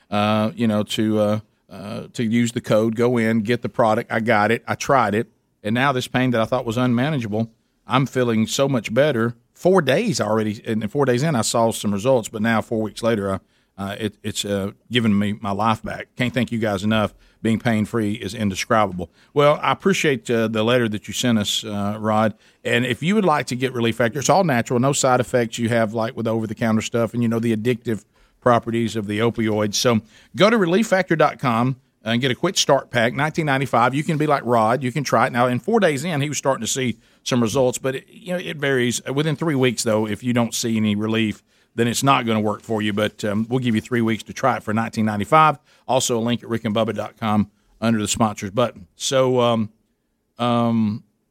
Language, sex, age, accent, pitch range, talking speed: English, male, 50-69, American, 110-130 Hz, 225 wpm